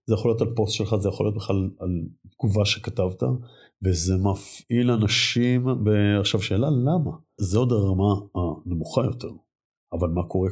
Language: Hebrew